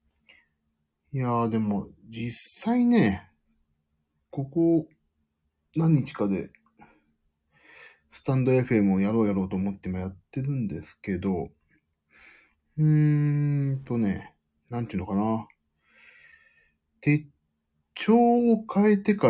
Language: Japanese